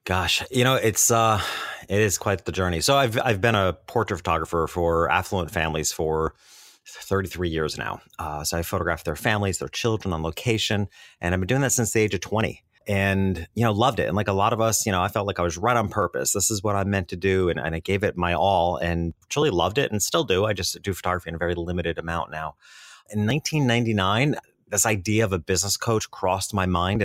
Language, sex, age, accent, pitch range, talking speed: English, male, 30-49, American, 85-110 Hz, 235 wpm